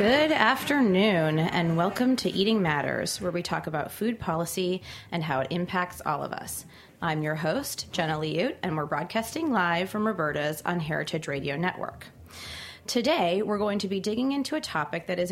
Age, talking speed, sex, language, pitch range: 30-49, 180 wpm, female, English, 160-200 Hz